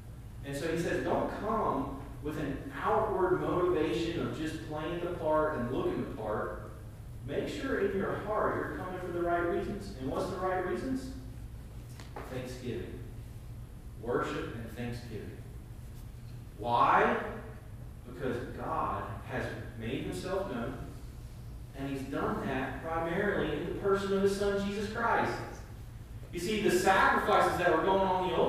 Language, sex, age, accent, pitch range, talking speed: English, male, 40-59, American, 120-185 Hz, 145 wpm